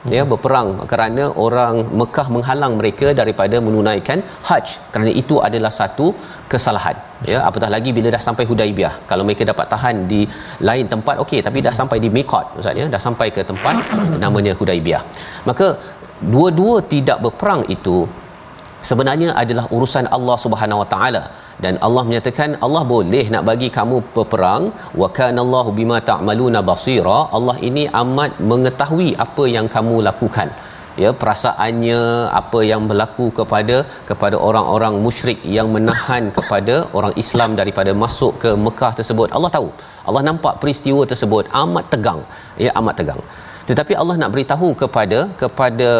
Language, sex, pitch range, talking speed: Malayalam, male, 110-135 Hz, 150 wpm